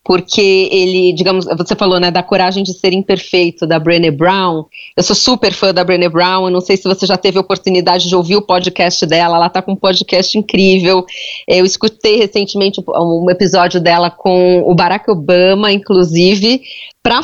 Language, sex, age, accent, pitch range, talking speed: English, female, 30-49, Brazilian, 180-200 Hz, 185 wpm